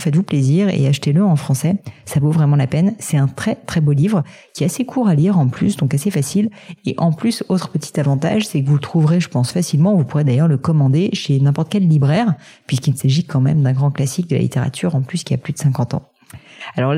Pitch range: 140-180 Hz